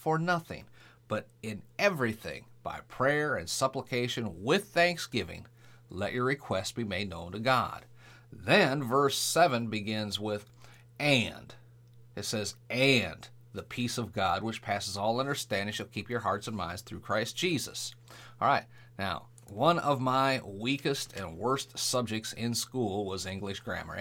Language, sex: English, male